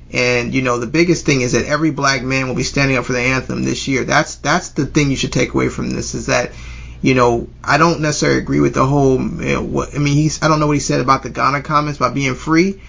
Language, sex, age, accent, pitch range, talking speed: English, male, 30-49, American, 125-150 Hz, 280 wpm